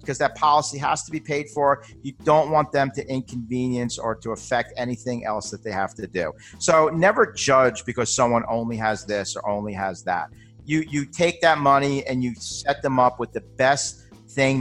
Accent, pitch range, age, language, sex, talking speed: American, 115-140 Hz, 50-69, English, male, 205 wpm